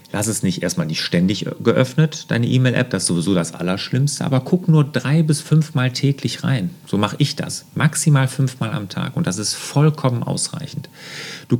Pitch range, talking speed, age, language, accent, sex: 120-155 Hz, 185 wpm, 40-59, German, German, male